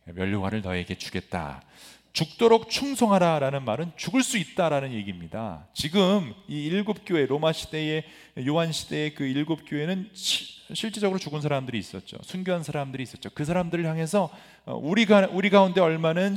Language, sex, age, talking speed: English, male, 40-59, 130 wpm